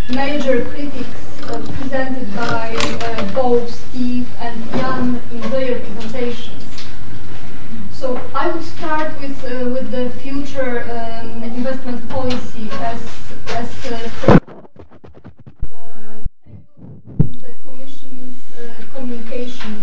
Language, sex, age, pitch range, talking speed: English, female, 30-49, 235-275 Hz, 100 wpm